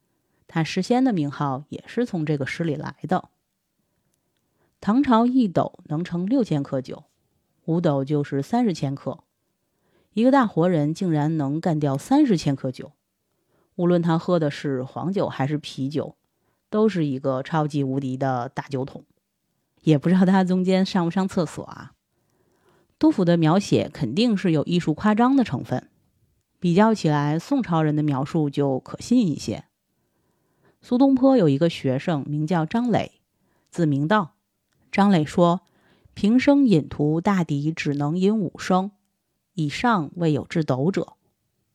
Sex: female